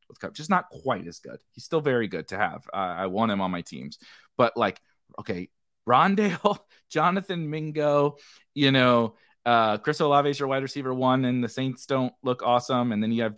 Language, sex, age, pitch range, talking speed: English, male, 30-49, 110-150 Hz, 200 wpm